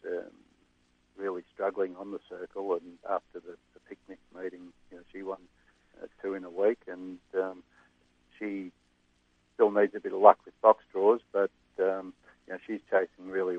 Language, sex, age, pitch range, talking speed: English, male, 60-79, 90-105 Hz, 175 wpm